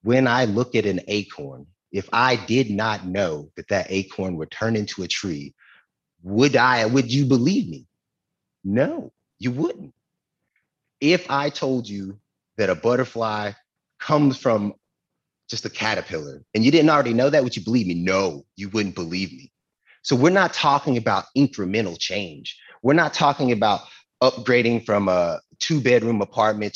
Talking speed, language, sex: 155 wpm, English, male